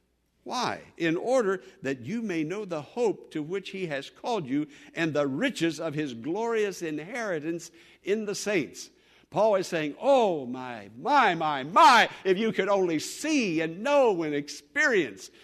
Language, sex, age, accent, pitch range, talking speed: English, male, 60-79, American, 140-195 Hz, 165 wpm